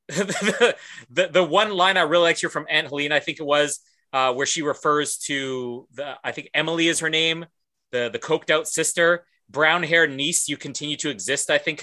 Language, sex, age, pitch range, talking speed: English, male, 30-49, 140-195 Hz, 215 wpm